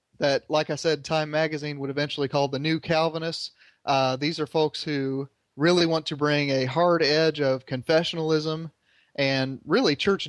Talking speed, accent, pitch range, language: 170 wpm, American, 135-155 Hz, English